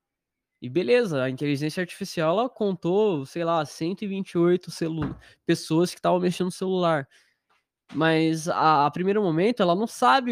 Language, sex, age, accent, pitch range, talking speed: Portuguese, male, 20-39, Brazilian, 145-190 Hz, 145 wpm